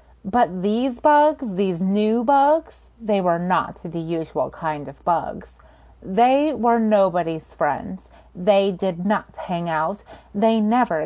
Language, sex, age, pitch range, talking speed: English, female, 30-49, 195-255 Hz, 135 wpm